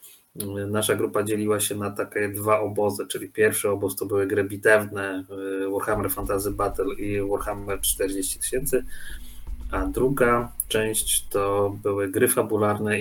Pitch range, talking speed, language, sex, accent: 100-110 Hz, 135 wpm, Polish, male, native